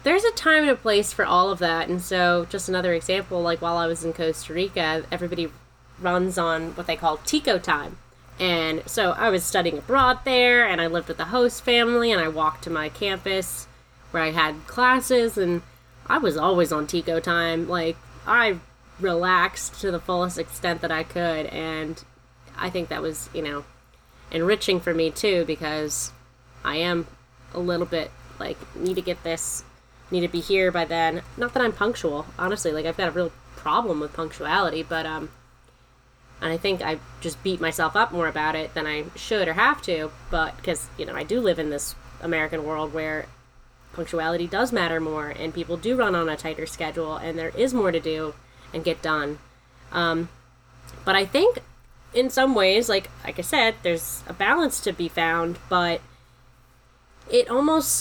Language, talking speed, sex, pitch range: English, 190 wpm, female, 155-180 Hz